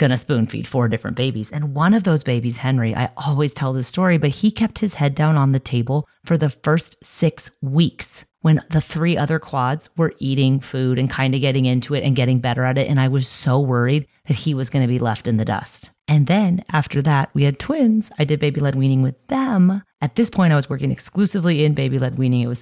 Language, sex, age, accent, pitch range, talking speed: English, female, 30-49, American, 130-170 Hz, 245 wpm